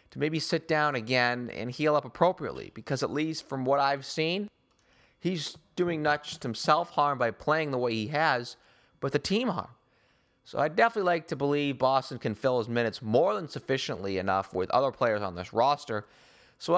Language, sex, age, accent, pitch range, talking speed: English, male, 30-49, American, 130-155 Hz, 195 wpm